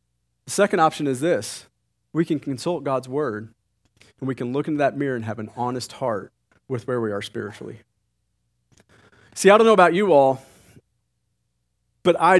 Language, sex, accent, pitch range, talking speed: English, male, American, 110-175 Hz, 175 wpm